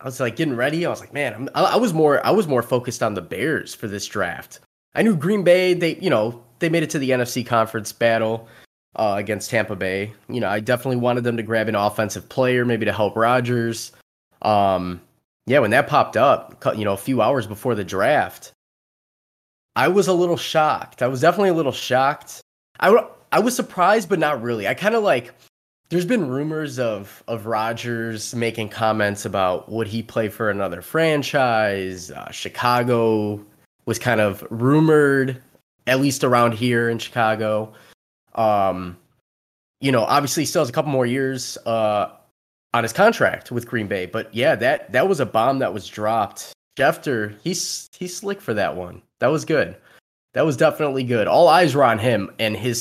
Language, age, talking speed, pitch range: English, 20-39, 195 wpm, 110-135 Hz